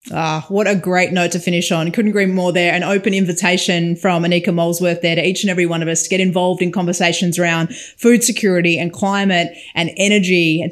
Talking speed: 220 wpm